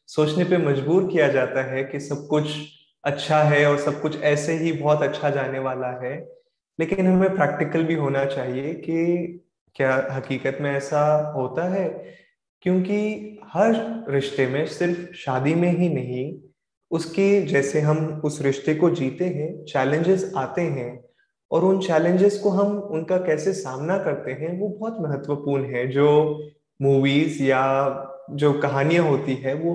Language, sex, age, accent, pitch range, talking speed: Hindi, male, 20-39, native, 135-175 Hz, 155 wpm